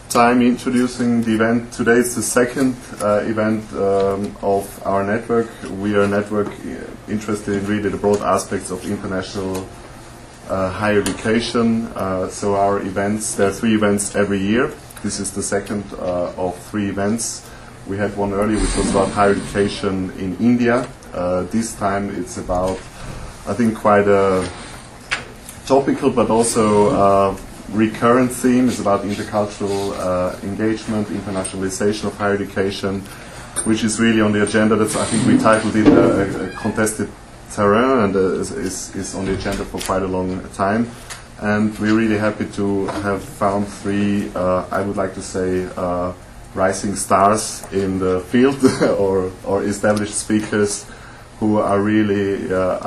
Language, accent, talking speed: English, German, 160 wpm